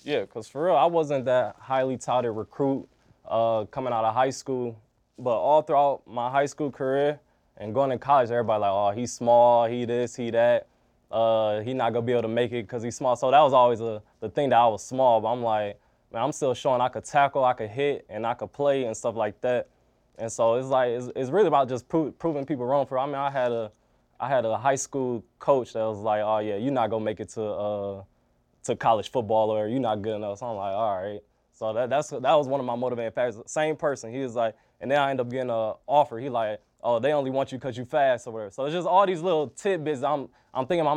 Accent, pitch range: American, 115-140 Hz